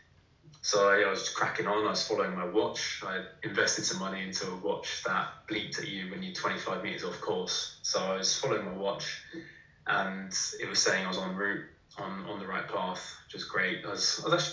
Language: English